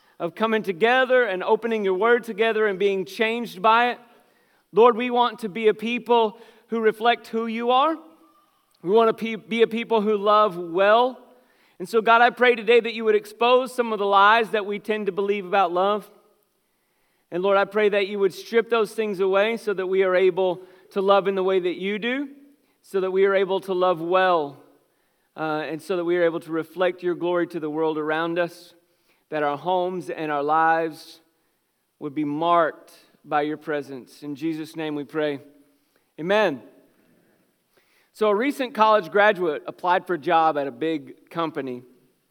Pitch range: 165-220 Hz